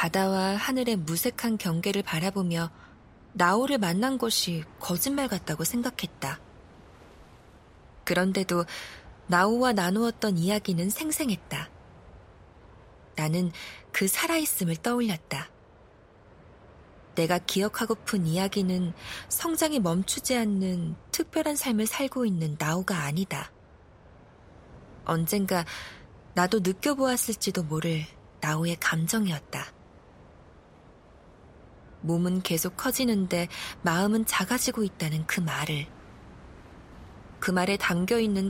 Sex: female